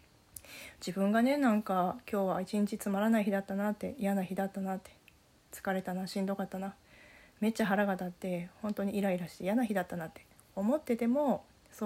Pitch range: 190-240 Hz